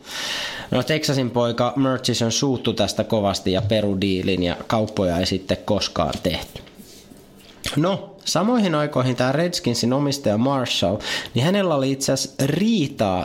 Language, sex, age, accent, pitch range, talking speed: Finnish, male, 30-49, native, 105-140 Hz, 130 wpm